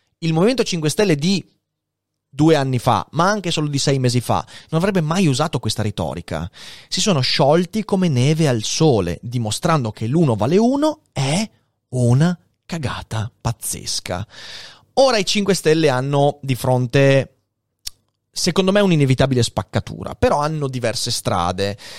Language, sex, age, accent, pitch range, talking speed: Italian, male, 30-49, native, 115-180 Hz, 140 wpm